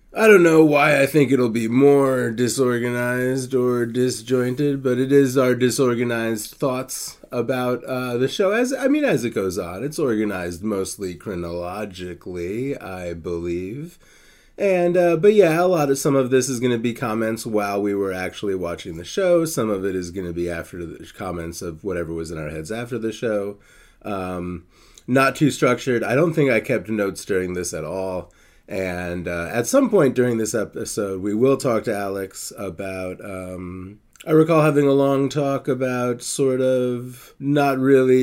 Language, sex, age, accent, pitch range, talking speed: English, male, 30-49, American, 100-130 Hz, 180 wpm